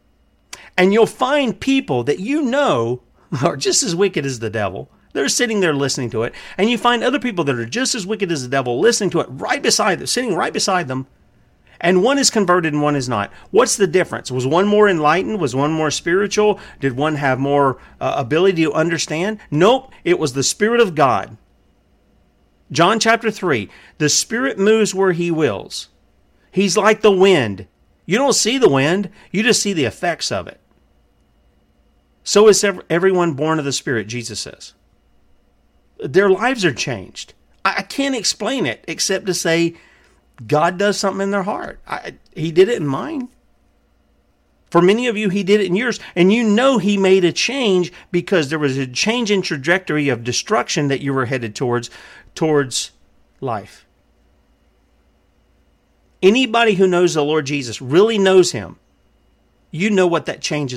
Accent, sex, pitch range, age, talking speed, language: American, male, 120-200 Hz, 40-59, 175 wpm, English